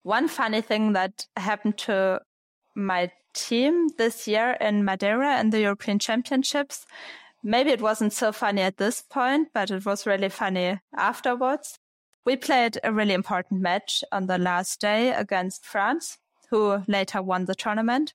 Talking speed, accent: 155 wpm, German